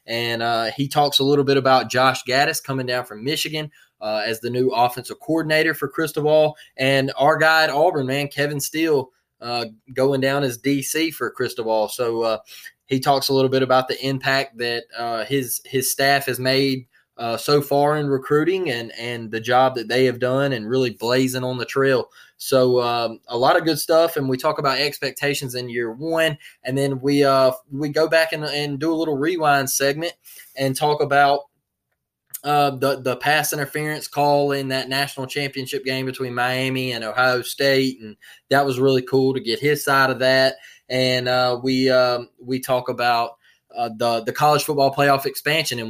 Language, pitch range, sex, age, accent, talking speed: English, 125-145 Hz, male, 20-39, American, 195 wpm